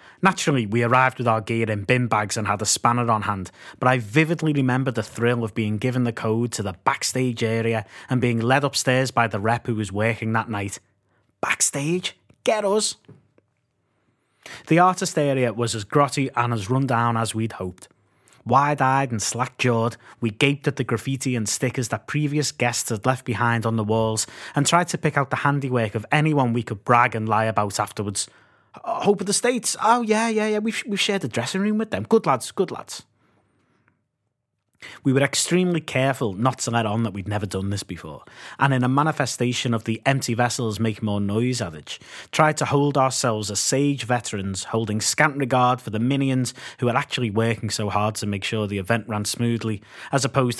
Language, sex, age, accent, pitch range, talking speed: English, male, 30-49, British, 110-135 Hz, 200 wpm